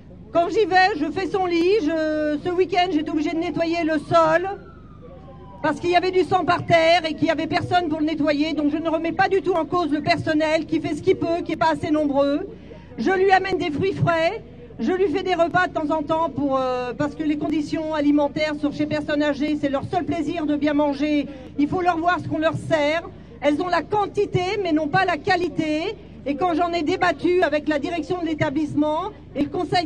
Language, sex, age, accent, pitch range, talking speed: French, female, 40-59, French, 300-350 Hz, 230 wpm